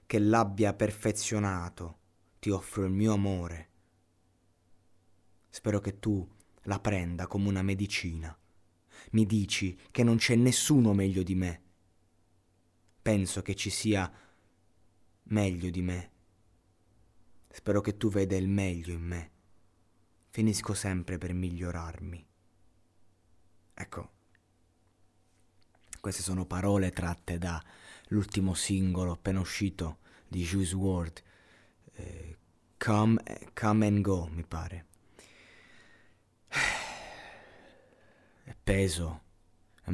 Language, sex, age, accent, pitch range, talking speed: Italian, male, 20-39, native, 85-105 Hz, 100 wpm